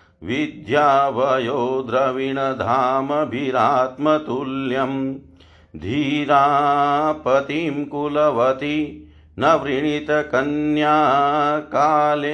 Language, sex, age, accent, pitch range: Hindi, male, 50-69, native, 130-145 Hz